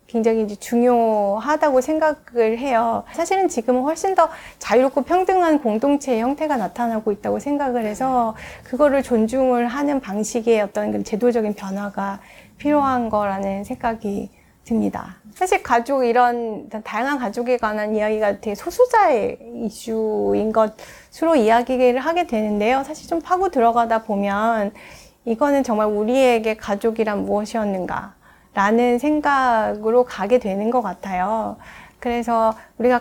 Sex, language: female, Korean